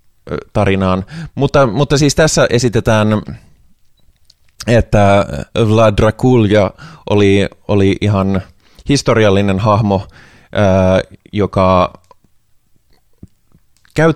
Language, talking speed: Finnish, 70 wpm